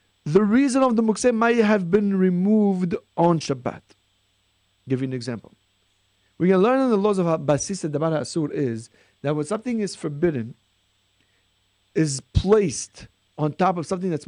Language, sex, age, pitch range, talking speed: English, male, 40-59, 130-210 Hz, 165 wpm